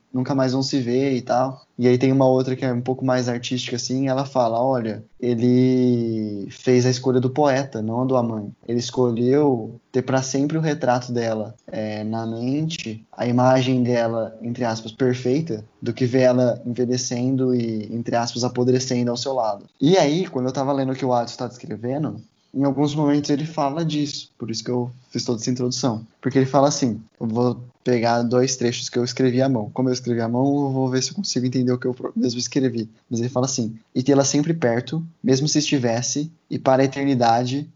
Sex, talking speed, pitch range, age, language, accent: male, 210 wpm, 120-140 Hz, 10-29, Portuguese, Brazilian